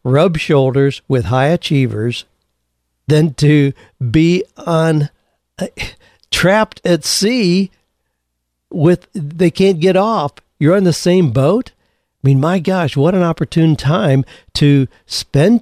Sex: male